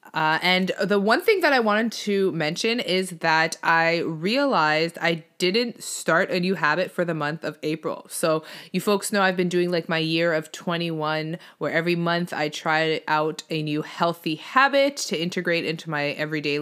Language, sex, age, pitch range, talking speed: English, female, 20-39, 155-195 Hz, 190 wpm